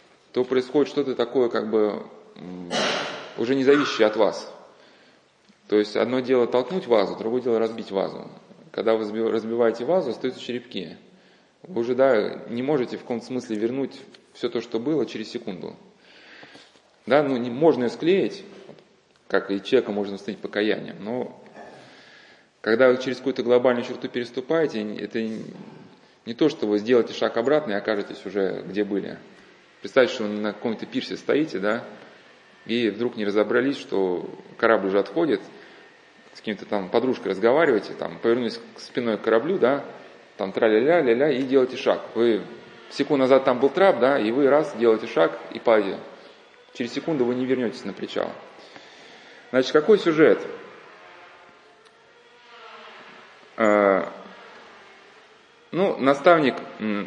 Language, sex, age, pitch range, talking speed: Russian, male, 20-39, 110-140 Hz, 140 wpm